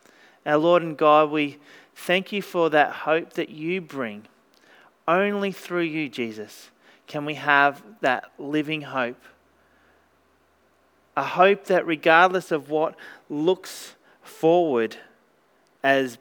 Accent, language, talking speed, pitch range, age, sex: Australian, English, 120 wpm, 140-160 Hz, 40-59, male